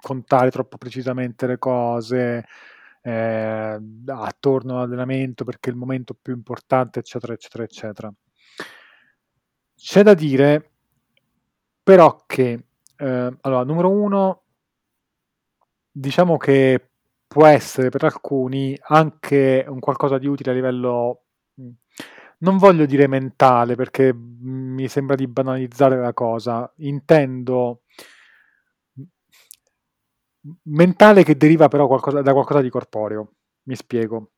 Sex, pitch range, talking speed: male, 125-150 Hz, 105 wpm